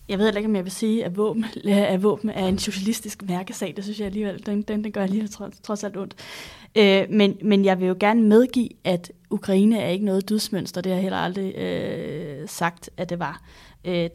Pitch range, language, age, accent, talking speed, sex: 170-200 Hz, Danish, 20-39, native, 235 wpm, female